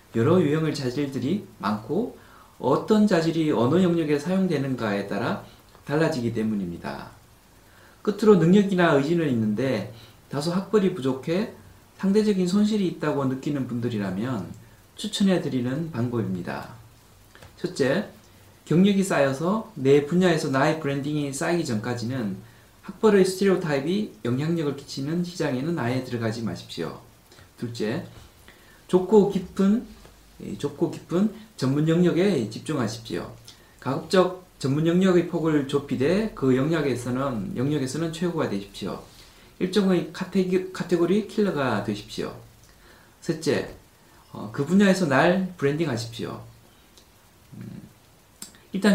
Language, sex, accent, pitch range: Korean, male, native, 120-180 Hz